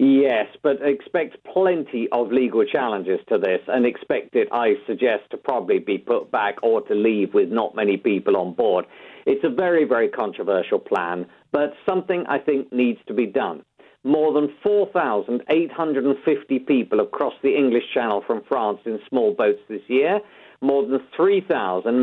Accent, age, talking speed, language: British, 50-69, 165 wpm, English